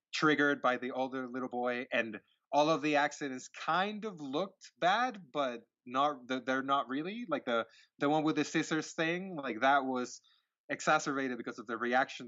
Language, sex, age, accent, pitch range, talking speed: English, male, 20-39, American, 115-145 Hz, 175 wpm